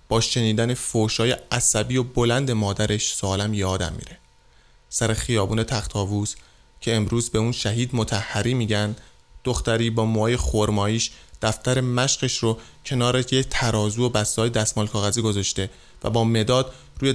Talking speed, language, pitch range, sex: 135 wpm, Persian, 105-120 Hz, male